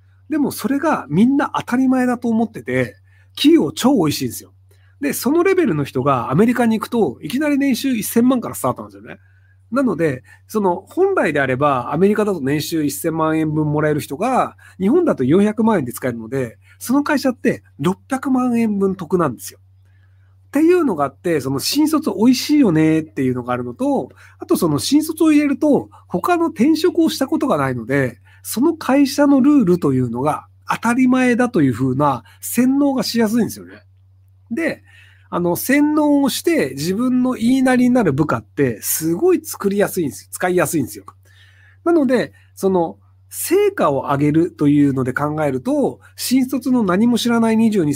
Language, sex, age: Japanese, male, 40-59